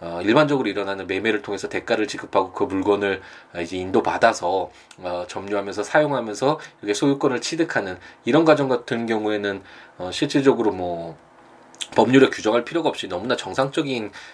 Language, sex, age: Korean, male, 20-39